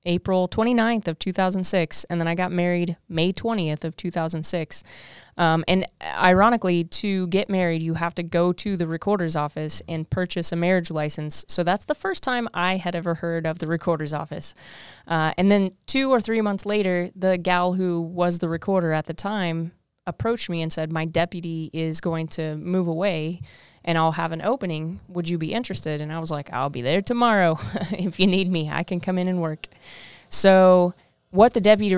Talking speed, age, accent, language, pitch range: 195 wpm, 20-39, American, English, 160-195 Hz